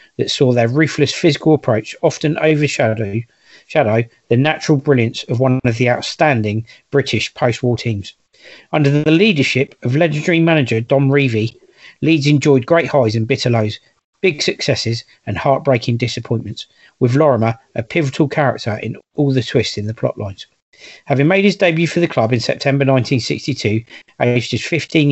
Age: 40-59